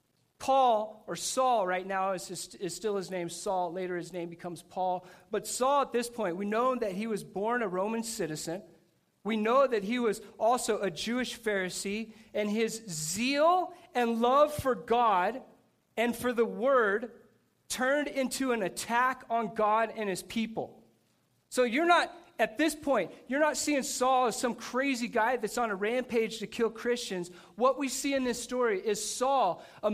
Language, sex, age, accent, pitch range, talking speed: English, male, 40-59, American, 200-255 Hz, 180 wpm